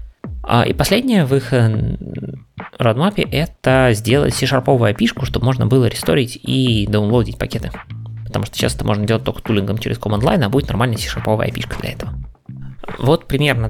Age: 20-39